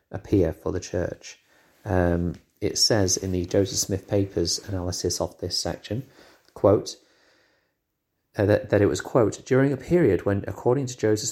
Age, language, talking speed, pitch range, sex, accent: 30-49, English, 160 wpm, 90-115 Hz, male, British